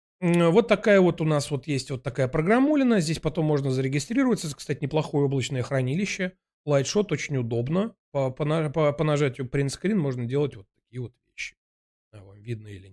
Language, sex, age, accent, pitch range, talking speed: Russian, male, 30-49, native, 130-210 Hz, 165 wpm